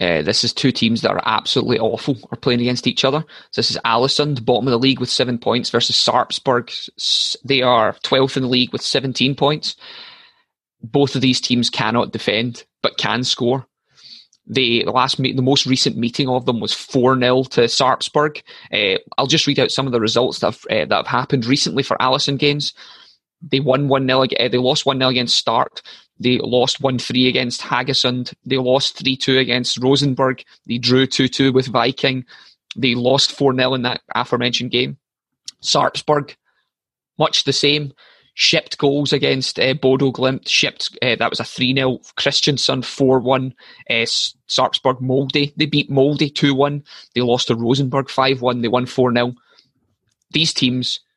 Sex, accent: male, British